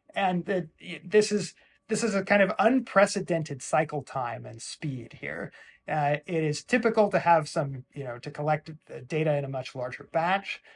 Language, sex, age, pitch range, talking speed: English, male, 30-49, 135-180 Hz, 175 wpm